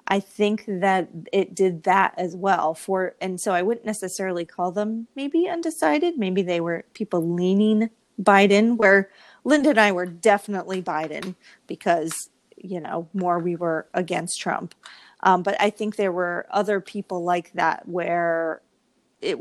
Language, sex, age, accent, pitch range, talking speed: English, female, 30-49, American, 180-220 Hz, 160 wpm